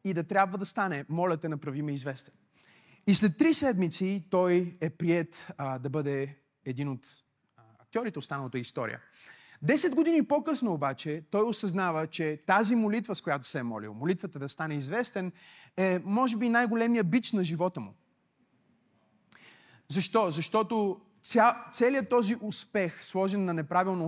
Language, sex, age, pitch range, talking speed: Bulgarian, male, 30-49, 145-190 Hz, 145 wpm